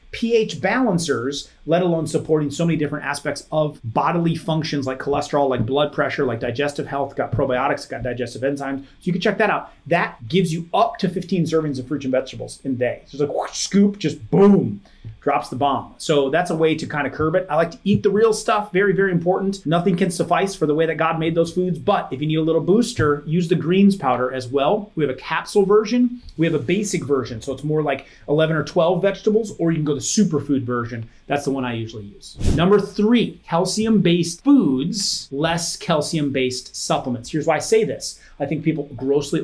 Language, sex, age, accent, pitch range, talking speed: English, male, 30-49, American, 135-180 Hz, 220 wpm